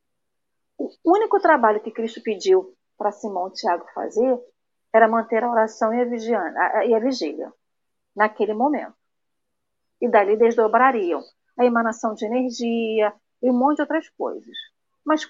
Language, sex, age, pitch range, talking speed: Portuguese, female, 40-59, 225-295 Hz, 140 wpm